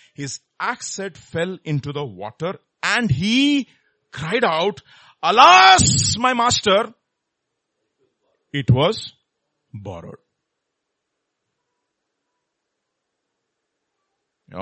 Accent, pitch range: Indian, 125-185 Hz